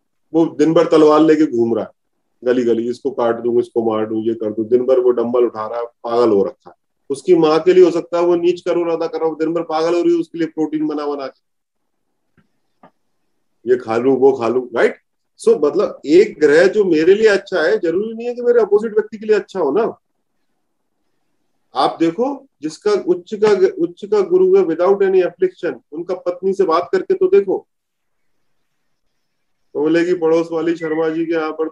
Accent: native